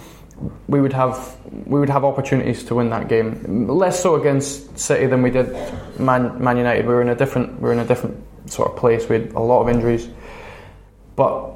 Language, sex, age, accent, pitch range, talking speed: English, male, 20-39, British, 115-130 Hz, 215 wpm